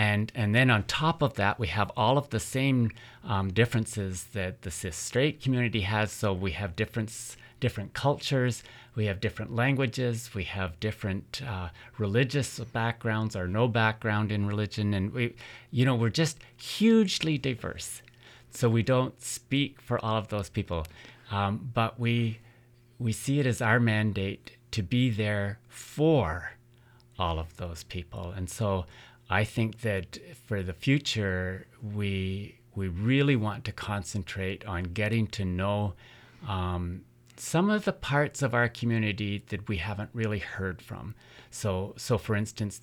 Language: English